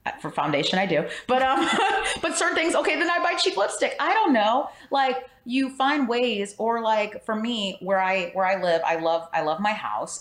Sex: female